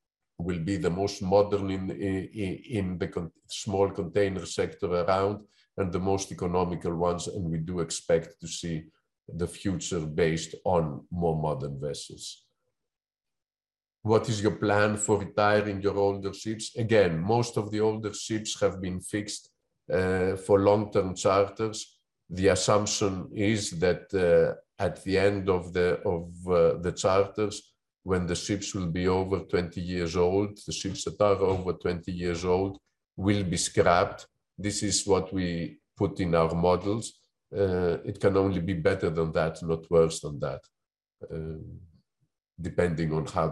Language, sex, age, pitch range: English, male, 50-69, 85-100 Hz